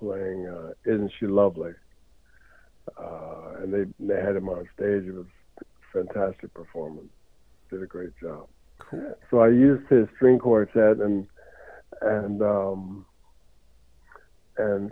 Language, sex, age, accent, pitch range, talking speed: English, male, 60-79, American, 95-110 Hz, 130 wpm